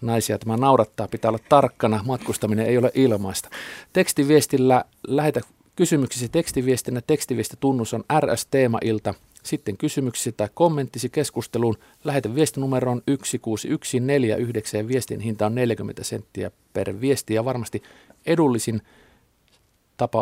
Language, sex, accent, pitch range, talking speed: Finnish, male, native, 110-140 Hz, 115 wpm